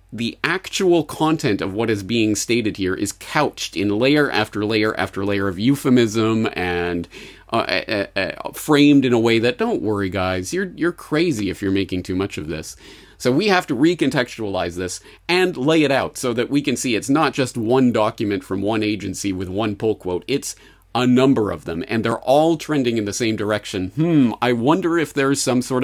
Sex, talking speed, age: male, 205 wpm, 30-49